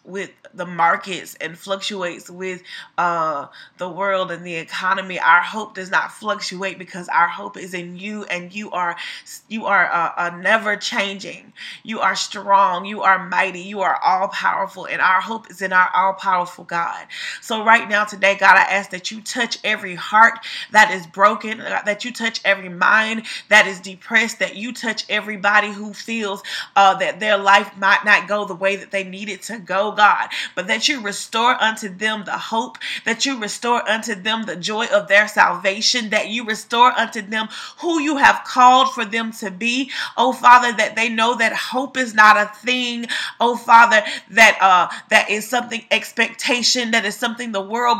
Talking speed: 190 wpm